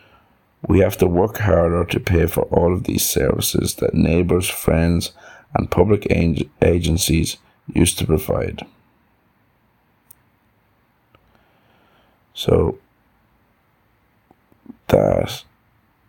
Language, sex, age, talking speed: English, male, 50-69, 85 wpm